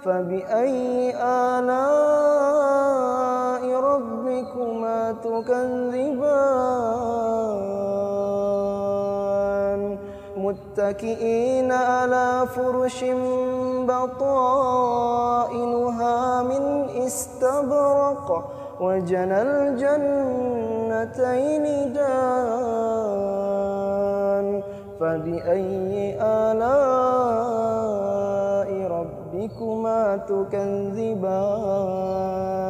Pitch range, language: 200-275 Hz, Indonesian